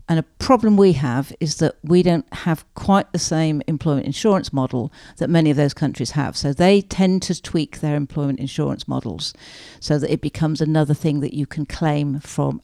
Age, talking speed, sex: 50-69, 200 wpm, female